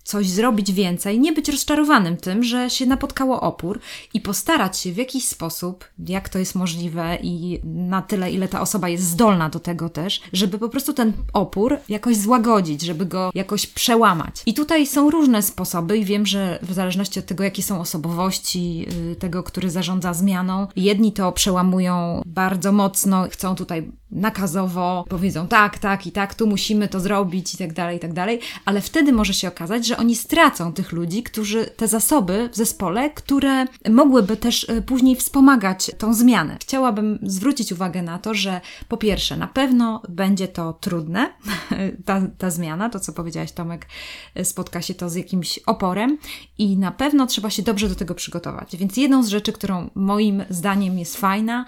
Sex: female